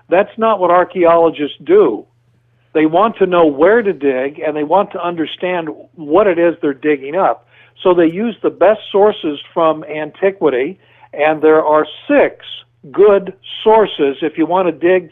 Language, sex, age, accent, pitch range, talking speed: English, male, 60-79, American, 145-190 Hz, 165 wpm